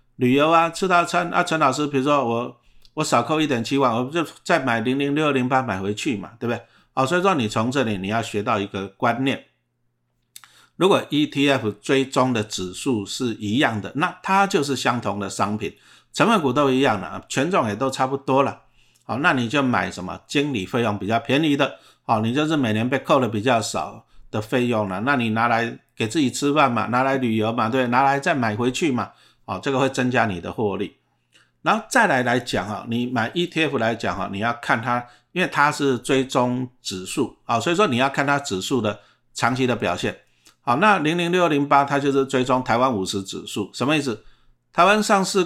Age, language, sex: 50-69, Chinese, male